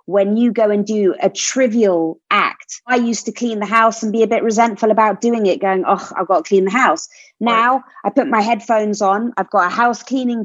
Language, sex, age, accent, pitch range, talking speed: English, female, 30-49, British, 200-260 Hz, 235 wpm